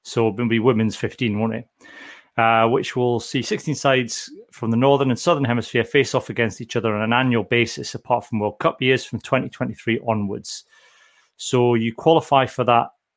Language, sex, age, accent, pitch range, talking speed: English, male, 30-49, British, 110-135 Hz, 185 wpm